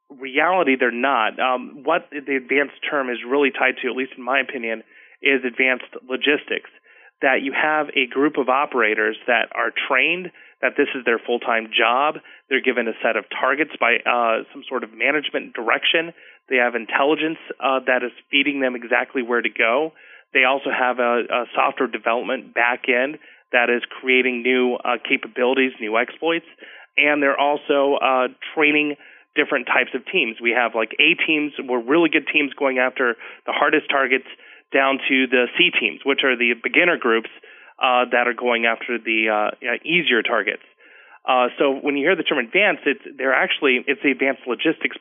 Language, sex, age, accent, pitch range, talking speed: English, male, 30-49, American, 125-145 Hz, 180 wpm